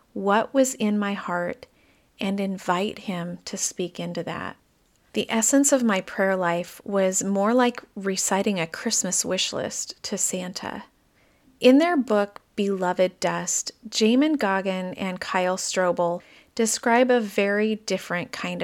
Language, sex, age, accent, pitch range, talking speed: English, female, 30-49, American, 185-240 Hz, 140 wpm